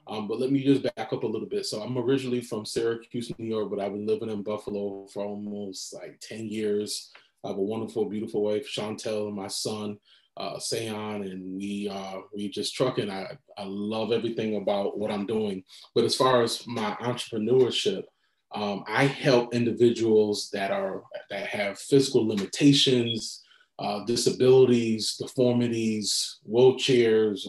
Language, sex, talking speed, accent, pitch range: English, male, 160 wpm, American, 105-125 Hz